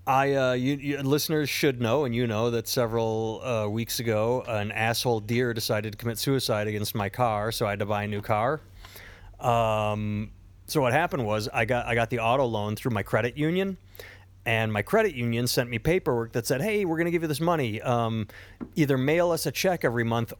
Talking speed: 220 wpm